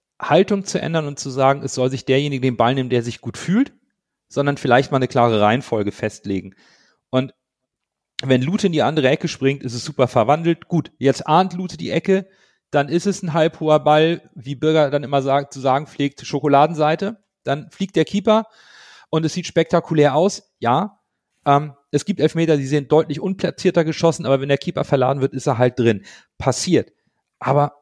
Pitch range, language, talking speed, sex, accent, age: 130-170 Hz, German, 190 wpm, male, German, 40-59